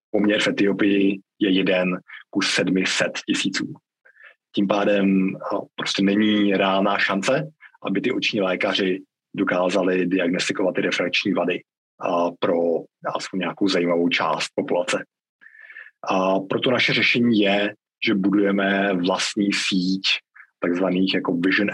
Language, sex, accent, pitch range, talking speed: Czech, male, native, 90-100 Hz, 110 wpm